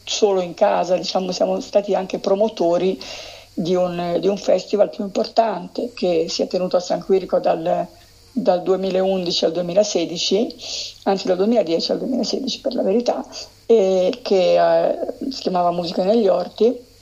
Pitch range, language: 180-225 Hz, Italian